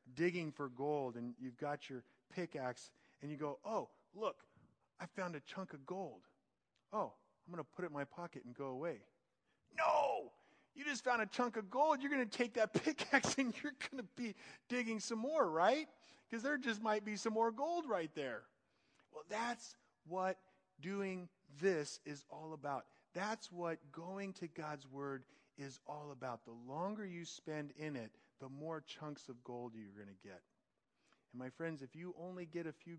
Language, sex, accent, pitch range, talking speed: English, male, American, 135-185 Hz, 185 wpm